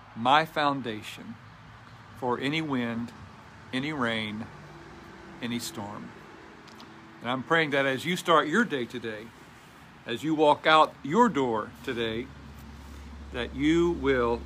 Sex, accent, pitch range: male, American, 115-160 Hz